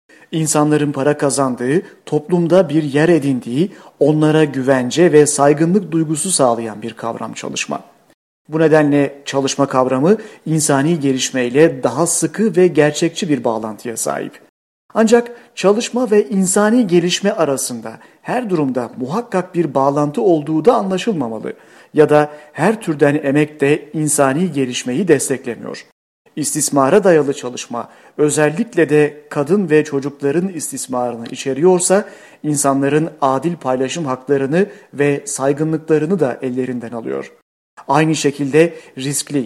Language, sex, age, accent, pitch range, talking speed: Turkish, male, 50-69, native, 135-175 Hz, 115 wpm